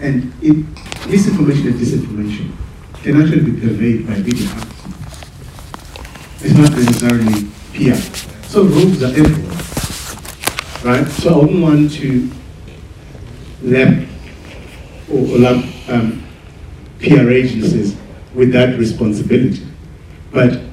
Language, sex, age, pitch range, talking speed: English, male, 50-69, 105-130 Hz, 100 wpm